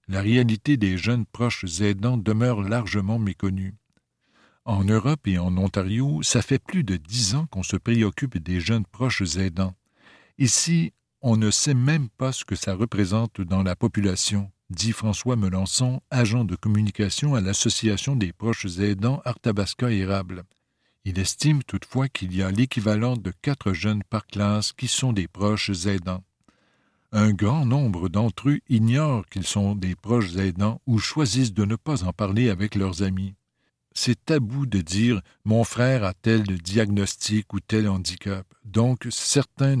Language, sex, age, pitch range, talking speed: French, male, 60-79, 100-125 Hz, 160 wpm